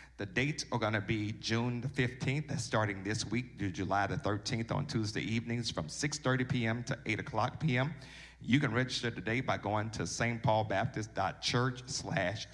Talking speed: 165 wpm